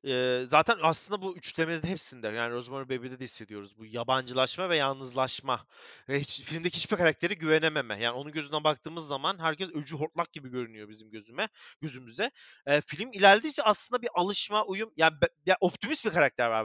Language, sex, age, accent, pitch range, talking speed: Turkish, male, 30-49, native, 140-205 Hz, 175 wpm